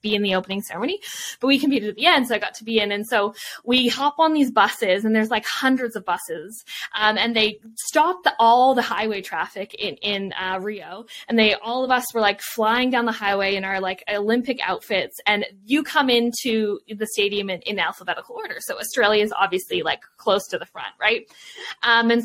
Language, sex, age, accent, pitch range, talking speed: English, female, 10-29, American, 205-255 Hz, 220 wpm